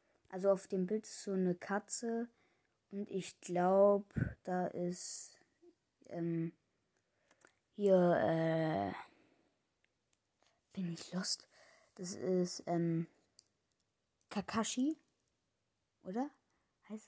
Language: German